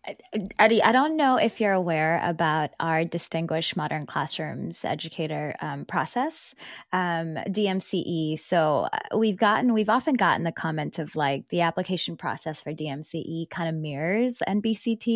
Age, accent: 20-39, American